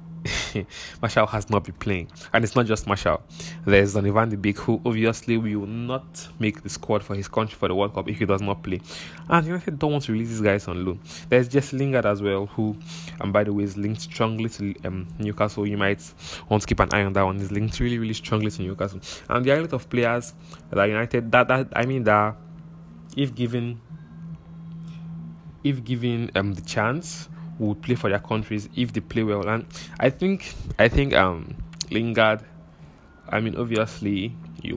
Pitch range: 100-120 Hz